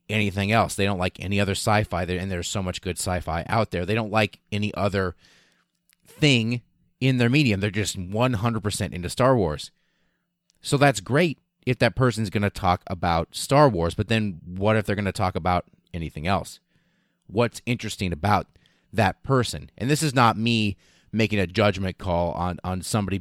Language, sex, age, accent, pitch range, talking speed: English, male, 30-49, American, 90-120 Hz, 185 wpm